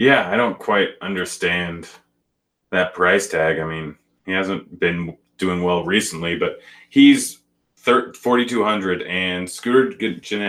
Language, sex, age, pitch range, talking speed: English, male, 30-49, 85-115 Hz, 130 wpm